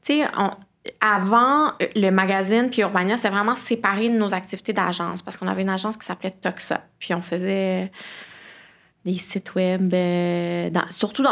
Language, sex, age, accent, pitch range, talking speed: French, female, 20-39, Canadian, 180-215 Hz, 155 wpm